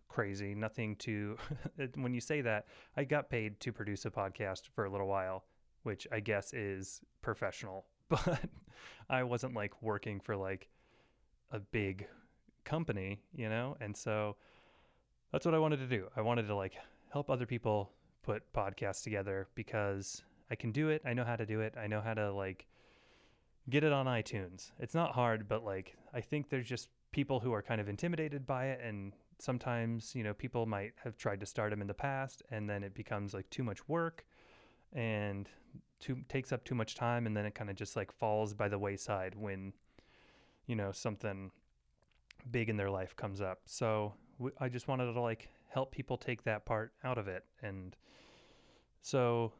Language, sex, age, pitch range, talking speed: English, male, 20-39, 100-130 Hz, 190 wpm